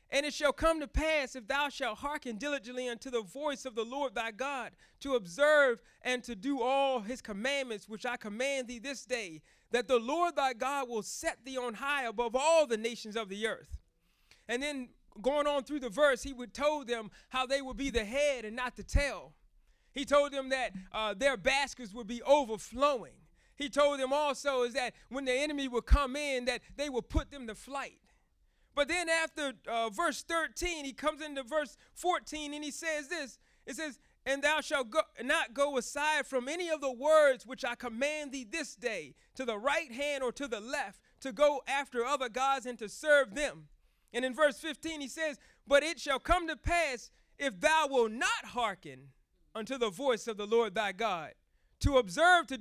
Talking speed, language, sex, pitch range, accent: 205 wpm, English, male, 240-290 Hz, American